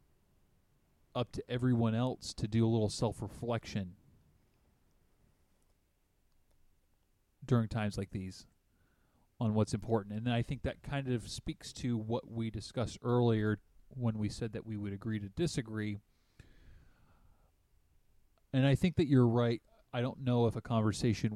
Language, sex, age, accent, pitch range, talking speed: English, male, 30-49, American, 95-115 Hz, 140 wpm